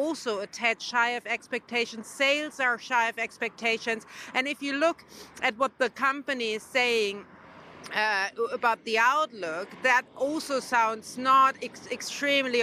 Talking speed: 140 wpm